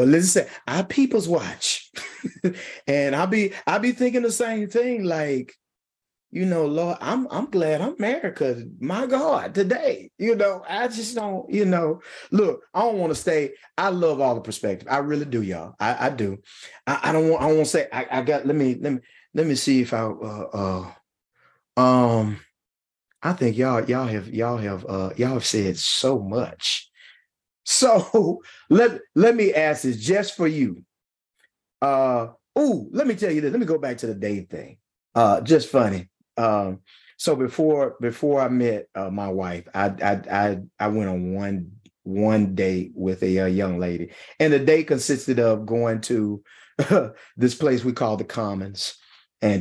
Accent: American